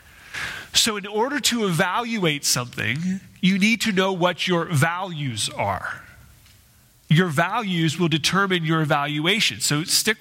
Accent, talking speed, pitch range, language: American, 130 wpm, 150-205 Hz, English